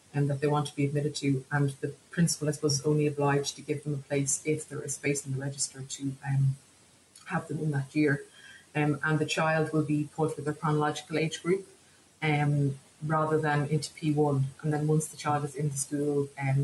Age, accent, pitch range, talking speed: 30-49, Irish, 140-155 Hz, 225 wpm